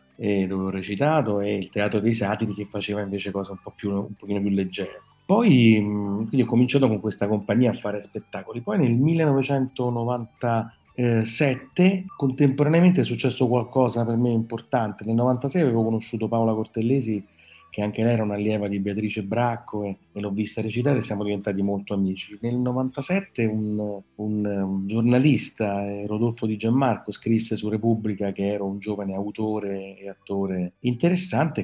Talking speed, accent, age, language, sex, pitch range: 155 wpm, native, 30-49, Italian, male, 100-120 Hz